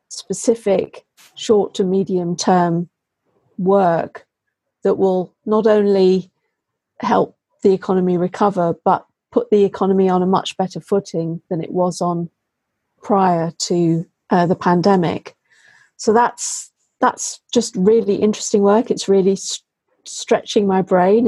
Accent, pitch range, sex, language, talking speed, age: British, 180-205 Hz, female, English, 125 wpm, 40-59